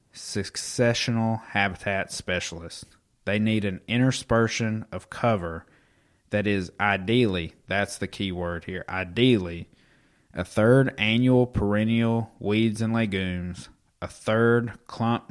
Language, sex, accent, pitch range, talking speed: English, male, American, 90-110 Hz, 110 wpm